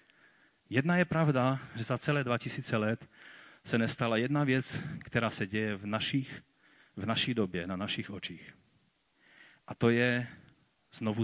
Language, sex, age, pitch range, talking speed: Czech, male, 40-59, 110-150 Hz, 145 wpm